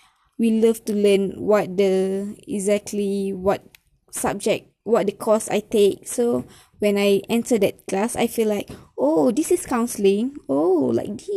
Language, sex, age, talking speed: English, female, 10-29, 155 wpm